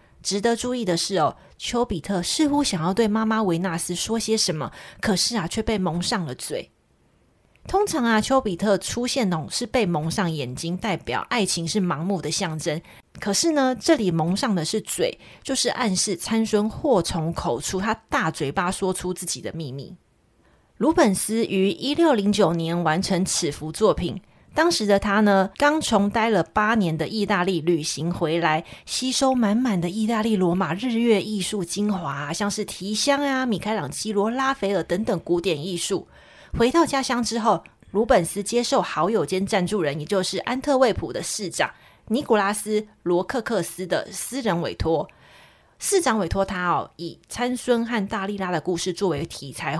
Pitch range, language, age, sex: 175-230 Hz, Chinese, 30-49, female